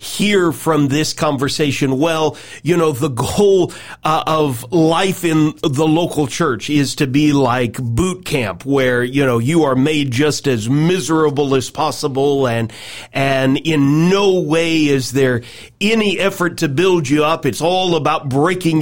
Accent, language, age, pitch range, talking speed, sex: American, English, 40-59, 140-185 Hz, 160 wpm, male